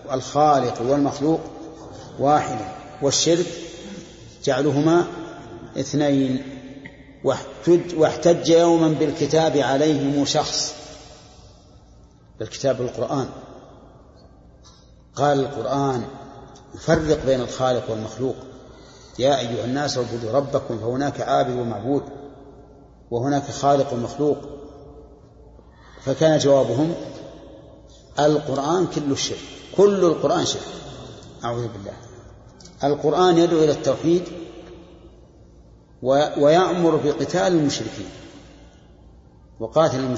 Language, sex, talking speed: Arabic, male, 75 wpm